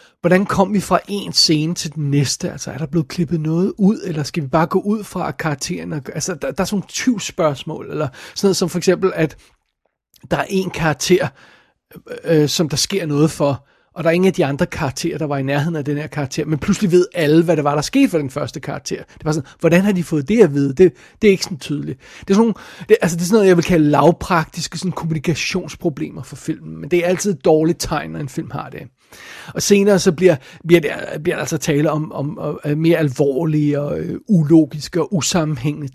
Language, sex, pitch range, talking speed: Danish, male, 150-185 Hz, 240 wpm